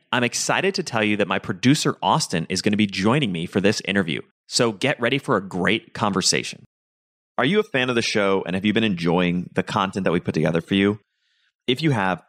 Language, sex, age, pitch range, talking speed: English, male, 30-49, 95-120 Hz, 235 wpm